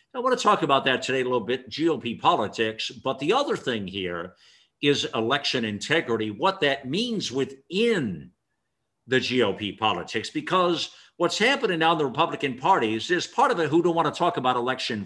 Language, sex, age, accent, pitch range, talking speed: English, male, 60-79, American, 120-170 Hz, 185 wpm